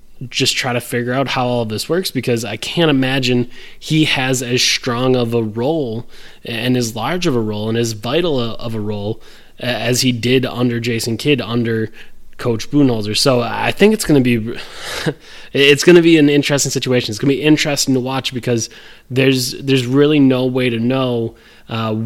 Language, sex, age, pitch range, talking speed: English, male, 20-39, 120-135 Hz, 195 wpm